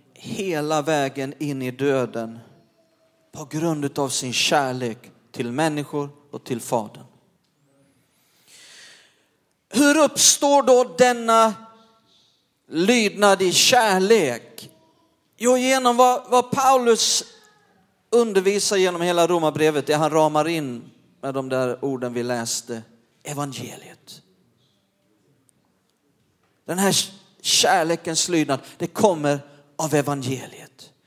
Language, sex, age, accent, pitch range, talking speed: Swedish, male, 40-59, native, 145-215 Hz, 95 wpm